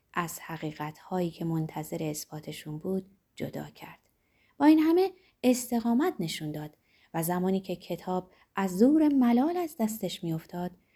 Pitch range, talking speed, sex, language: 165-255 Hz, 130 wpm, female, Persian